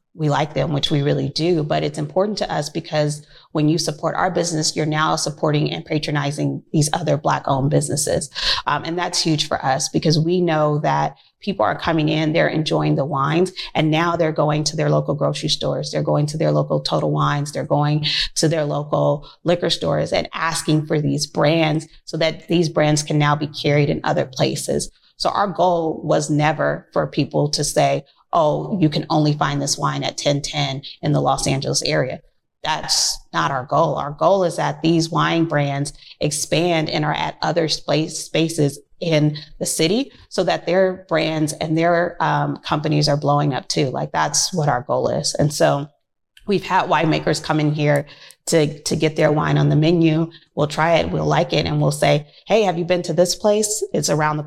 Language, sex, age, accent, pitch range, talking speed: English, female, 30-49, American, 145-165 Hz, 200 wpm